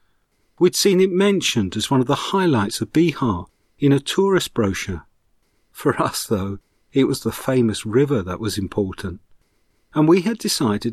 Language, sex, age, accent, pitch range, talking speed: English, male, 40-59, British, 105-145 Hz, 165 wpm